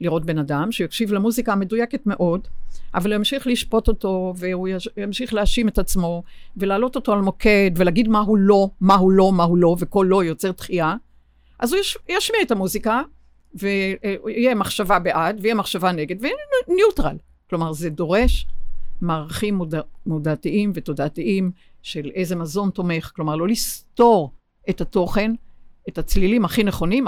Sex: female